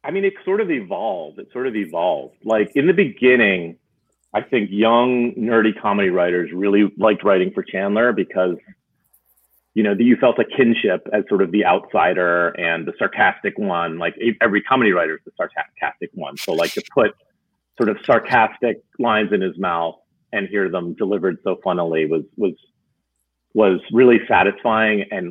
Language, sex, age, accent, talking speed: English, male, 40-59, American, 170 wpm